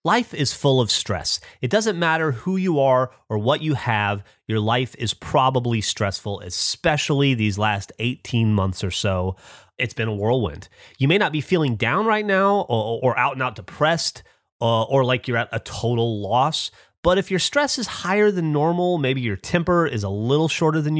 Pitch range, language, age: 105-170 Hz, English, 30-49